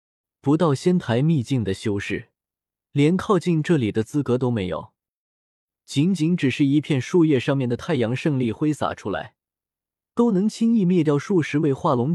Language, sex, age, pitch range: Chinese, male, 20-39, 110-160 Hz